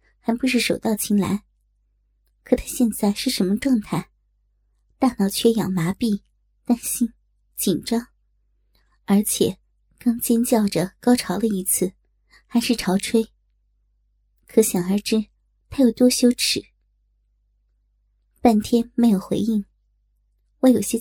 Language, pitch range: Chinese, 200-240 Hz